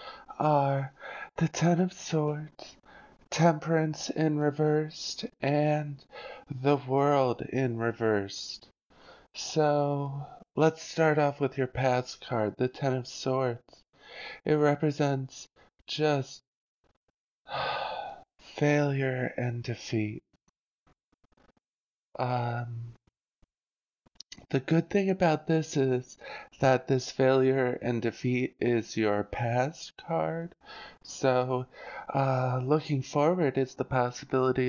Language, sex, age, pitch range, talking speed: English, male, 20-39, 120-145 Hz, 95 wpm